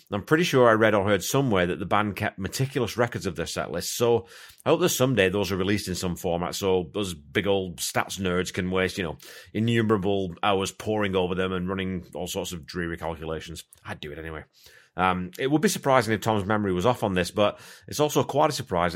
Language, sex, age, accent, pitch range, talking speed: English, male, 30-49, British, 90-115 Hz, 230 wpm